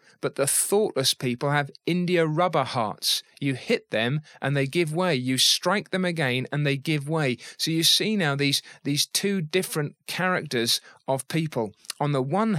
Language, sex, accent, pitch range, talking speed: English, male, British, 135-185 Hz, 175 wpm